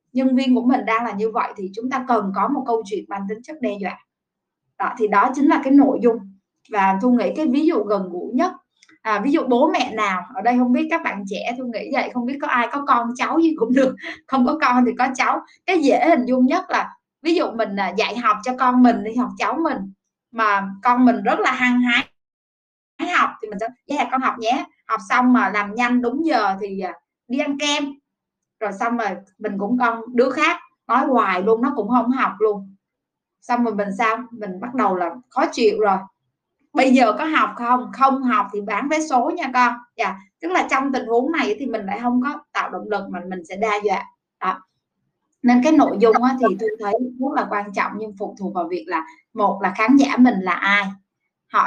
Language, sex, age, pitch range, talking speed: Vietnamese, female, 20-39, 210-270 Hz, 230 wpm